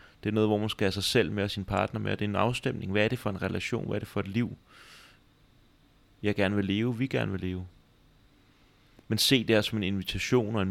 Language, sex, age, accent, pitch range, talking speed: Danish, male, 30-49, native, 90-110 Hz, 260 wpm